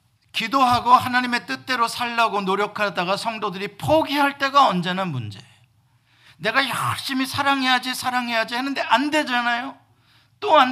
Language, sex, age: Korean, male, 50-69